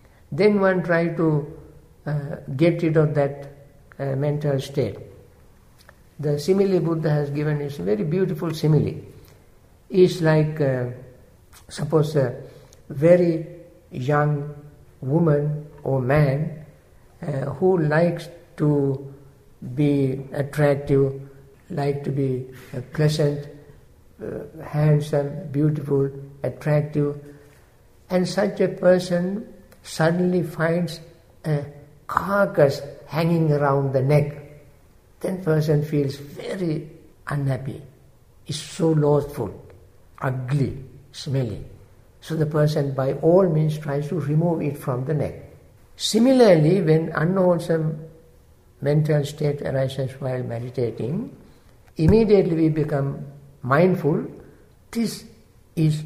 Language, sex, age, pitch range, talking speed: English, male, 60-79, 135-165 Hz, 105 wpm